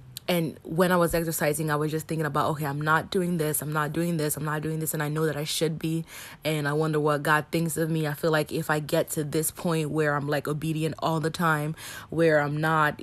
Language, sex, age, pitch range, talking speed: English, female, 20-39, 150-165 Hz, 265 wpm